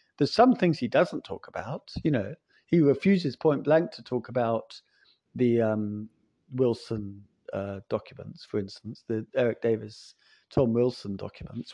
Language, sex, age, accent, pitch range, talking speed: English, male, 50-69, British, 115-150 Hz, 150 wpm